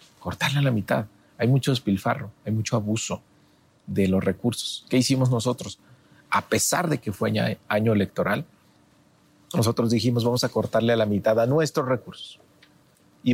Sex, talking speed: male, 155 wpm